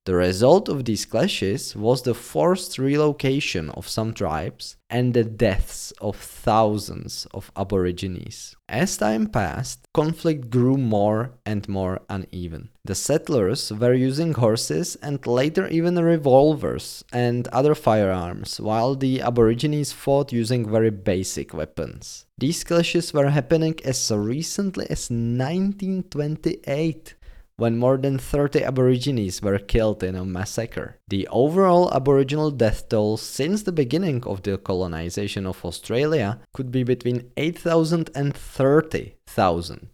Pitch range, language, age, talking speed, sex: 100-145 Hz, English, 20-39, 130 wpm, male